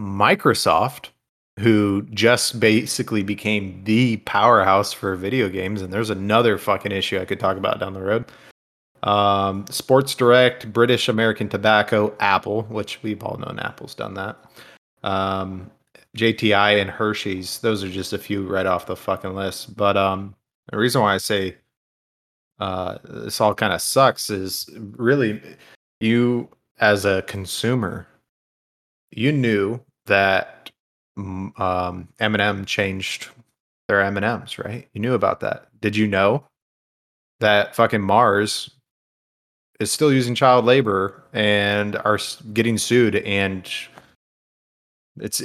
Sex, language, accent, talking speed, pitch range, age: male, English, American, 130 wpm, 100-120 Hz, 30-49